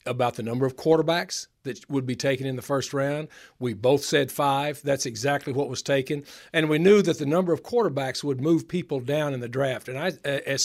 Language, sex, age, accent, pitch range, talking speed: English, male, 50-69, American, 130-160 Hz, 220 wpm